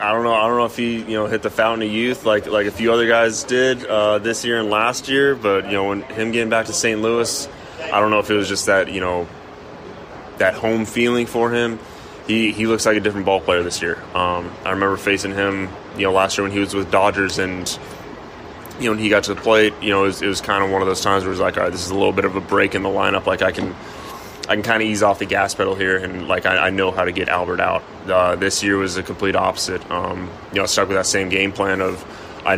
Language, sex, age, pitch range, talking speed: English, male, 20-39, 95-105 Hz, 285 wpm